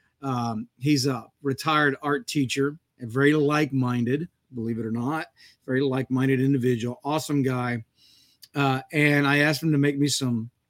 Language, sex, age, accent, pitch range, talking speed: English, male, 40-59, American, 120-145 Hz, 150 wpm